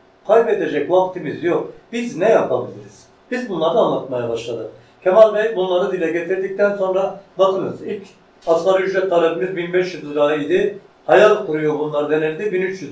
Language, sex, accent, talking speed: Turkish, male, native, 135 wpm